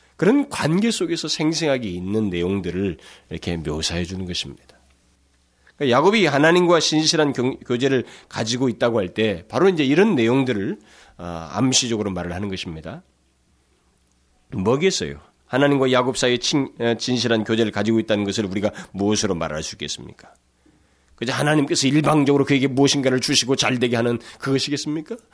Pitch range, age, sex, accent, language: 90-155 Hz, 40-59, male, native, Korean